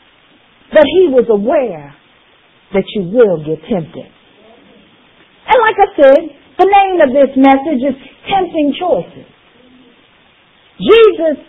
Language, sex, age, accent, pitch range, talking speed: English, female, 50-69, American, 205-325 Hz, 115 wpm